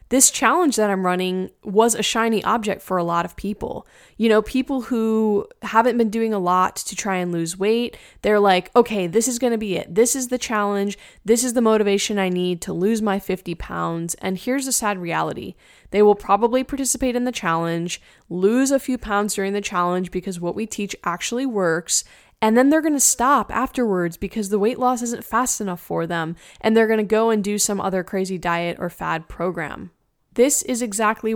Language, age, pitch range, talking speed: English, 10-29, 185-235 Hz, 210 wpm